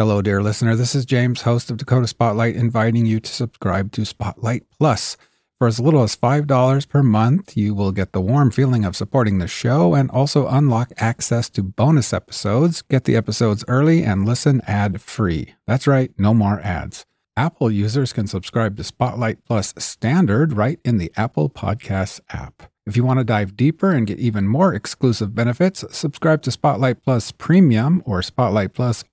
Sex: male